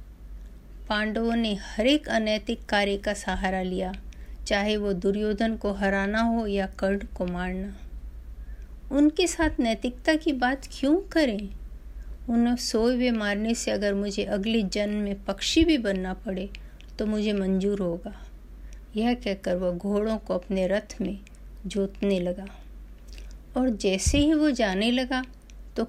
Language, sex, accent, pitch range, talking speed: Hindi, female, native, 175-225 Hz, 140 wpm